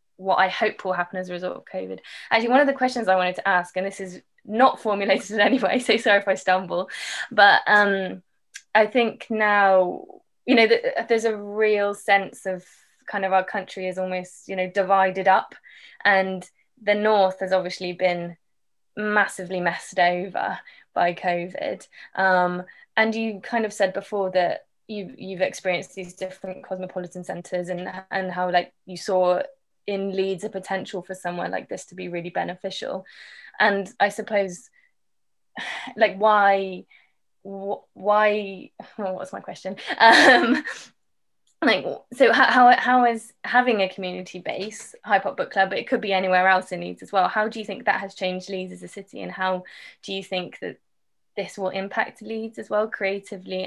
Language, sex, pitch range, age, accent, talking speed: English, female, 185-210 Hz, 20-39, British, 175 wpm